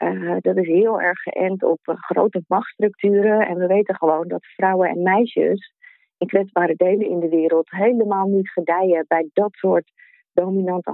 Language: Dutch